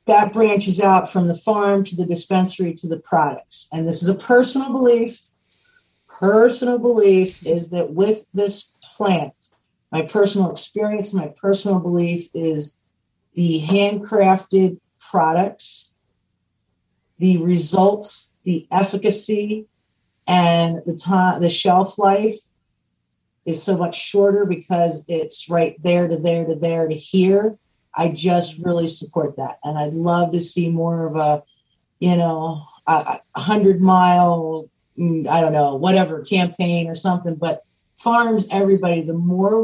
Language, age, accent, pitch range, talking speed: English, 50-69, American, 165-195 Hz, 135 wpm